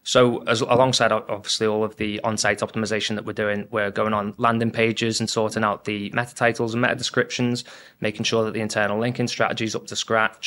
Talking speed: 195 wpm